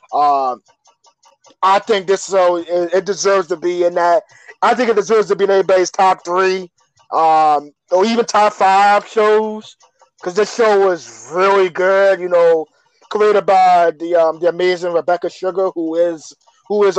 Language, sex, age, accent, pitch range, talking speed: English, male, 20-39, American, 165-200 Hz, 170 wpm